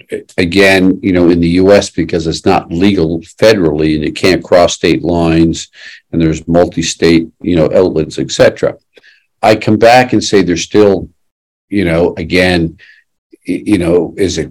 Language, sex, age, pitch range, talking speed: English, male, 50-69, 90-100 Hz, 155 wpm